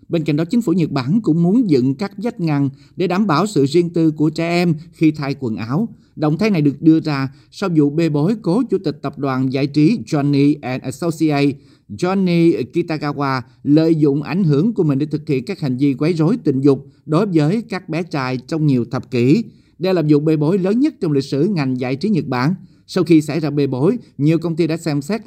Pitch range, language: 135-175 Hz, Vietnamese